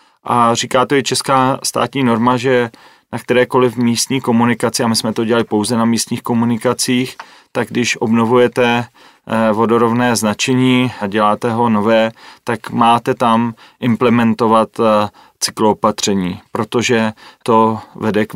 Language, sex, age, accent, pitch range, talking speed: Czech, male, 30-49, native, 110-125 Hz, 125 wpm